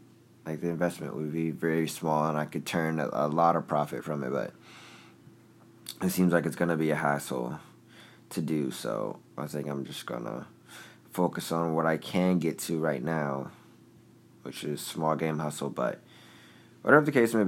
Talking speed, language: 190 wpm, English